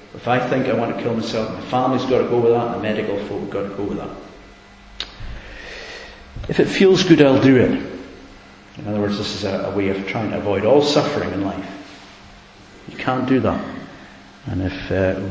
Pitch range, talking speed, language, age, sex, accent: 100-115 Hz, 215 wpm, English, 50-69, male, British